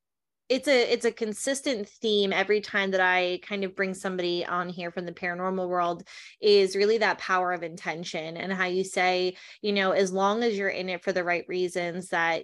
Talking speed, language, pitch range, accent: 205 wpm, English, 180-200 Hz, American